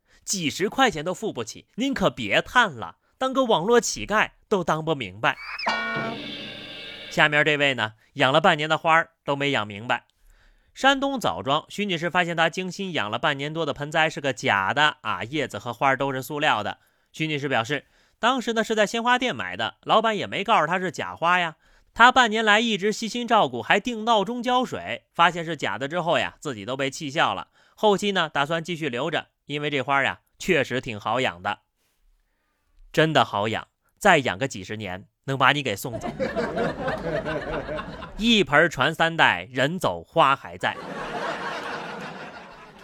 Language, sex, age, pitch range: Chinese, male, 30-49, 140-215 Hz